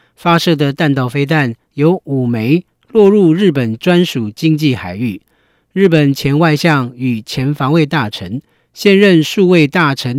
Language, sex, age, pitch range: Chinese, male, 40-59, 135-175 Hz